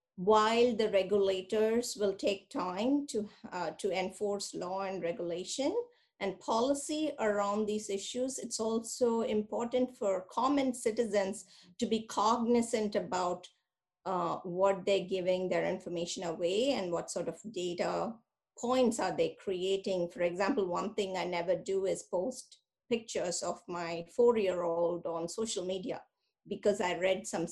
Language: English